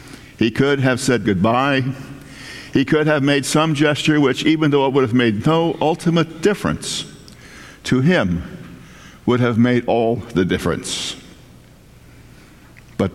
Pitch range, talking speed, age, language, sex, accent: 115-160 Hz, 135 wpm, 60-79, English, male, American